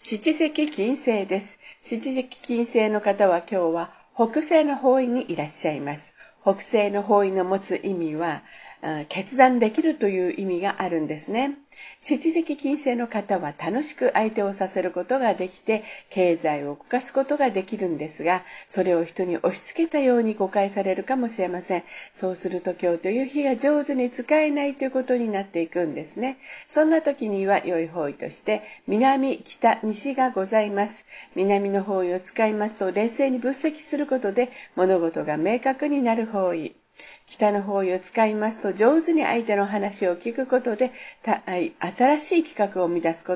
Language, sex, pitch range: Japanese, female, 185-265 Hz